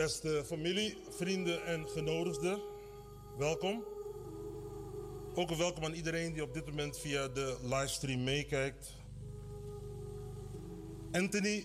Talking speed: 105 wpm